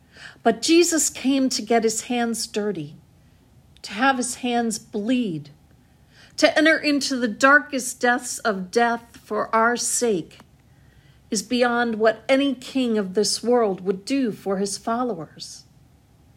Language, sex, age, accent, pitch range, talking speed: English, female, 50-69, American, 190-255 Hz, 135 wpm